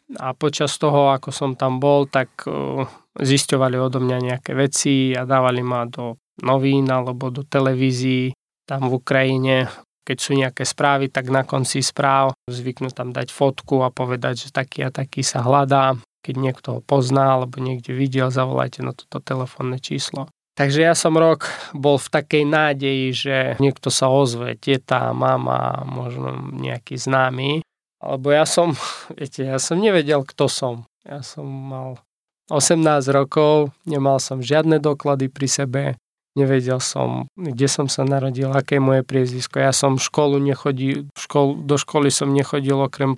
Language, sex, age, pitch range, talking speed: Slovak, male, 20-39, 130-145 Hz, 155 wpm